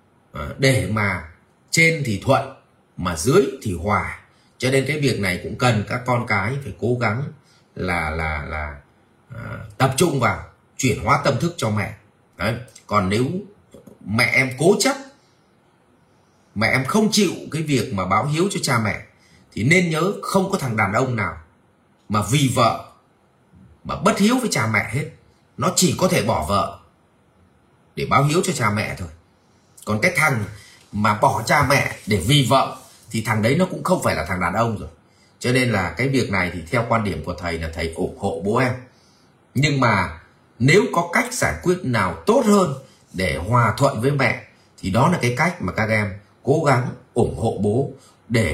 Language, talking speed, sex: Vietnamese, 190 wpm, male